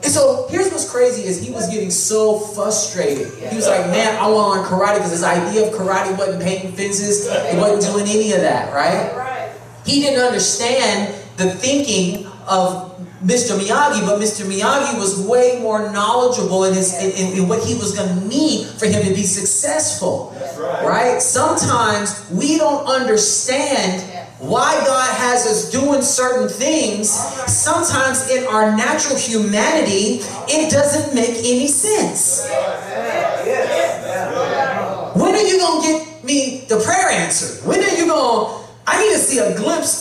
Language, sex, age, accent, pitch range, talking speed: English, male, 30-49, American, 190-270 Hz, 165 wpm